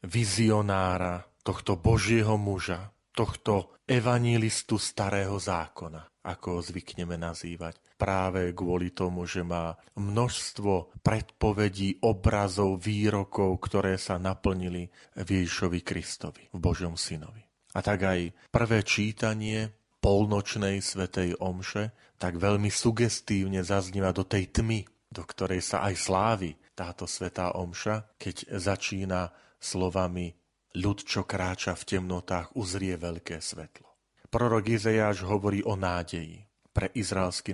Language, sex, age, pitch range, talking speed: Slovak, male, 40-59, 90-105 Hz, 110 wpm